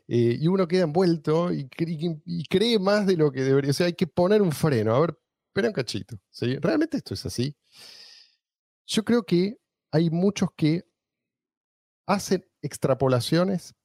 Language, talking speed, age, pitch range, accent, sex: Spanish, 170 wpm, 40-59, 130-185 Hz, Argentinian, male